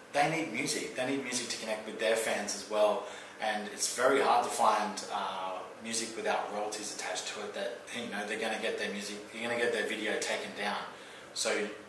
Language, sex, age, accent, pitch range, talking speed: English, male, 30-49, Australian, 110-125 Hz, 220 wpm